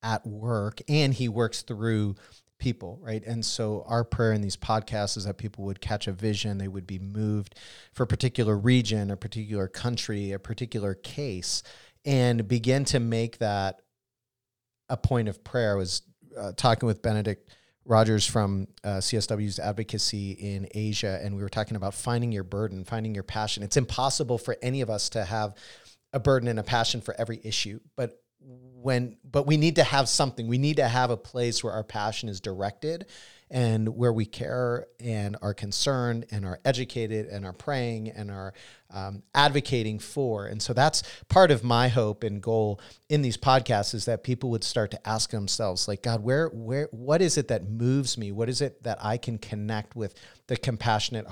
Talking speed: 190 wpm